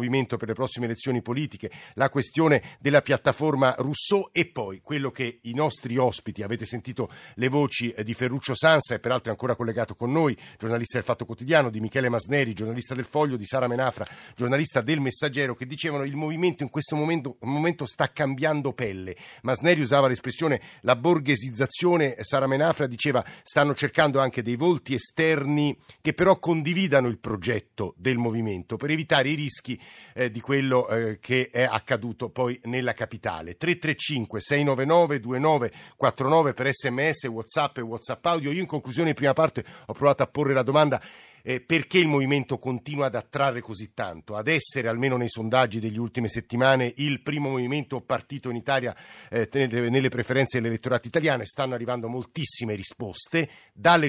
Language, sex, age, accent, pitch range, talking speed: Italian, male, 50-69, native, 120-145 Hz, 160 wpm